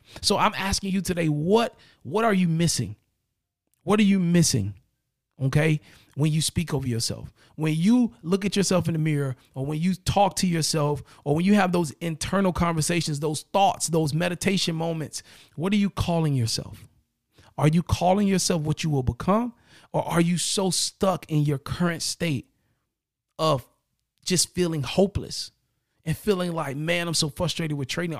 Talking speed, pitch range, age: 170 wpm, 135-185 Hz, 40-59